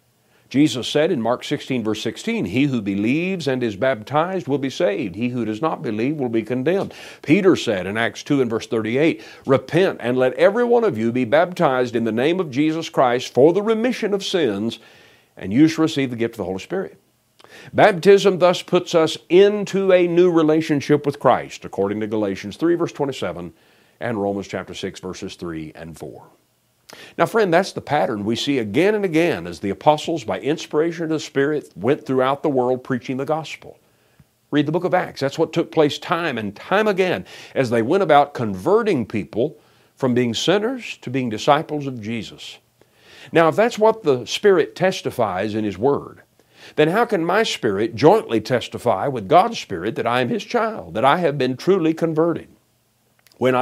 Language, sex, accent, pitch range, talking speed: English, male, American, 115-170 Hz, 190 wpm